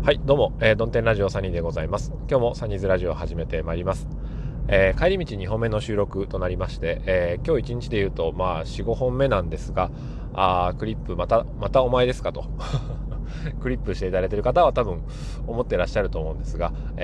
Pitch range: 90-130 Hz